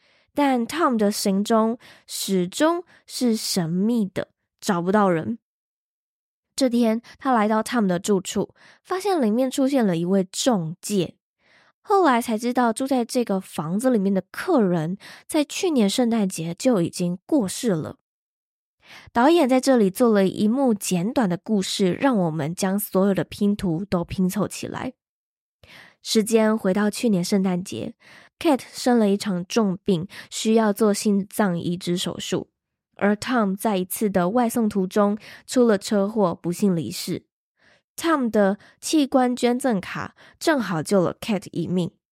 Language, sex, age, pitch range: Chinese, female, 10-29, 190-245 Hz